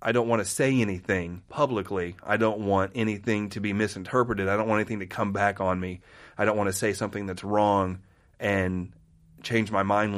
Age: 30-49